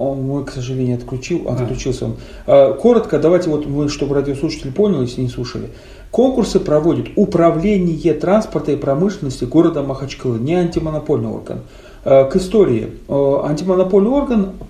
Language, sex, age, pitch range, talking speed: Russian, male, 40-59, 140-210 Hz, 130 wpm